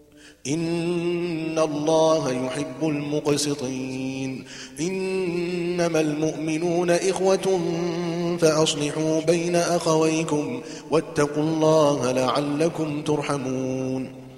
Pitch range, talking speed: 130-160 Hz, 60 wpm